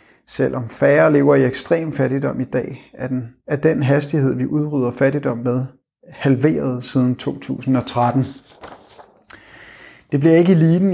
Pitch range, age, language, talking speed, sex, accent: 125-155 Hz, 30-49, Danish, 125 wpm, male, native